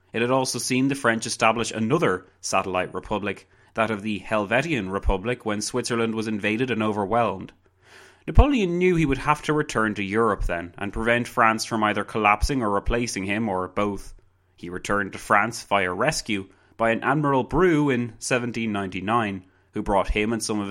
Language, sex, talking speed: English, male, 175 wpm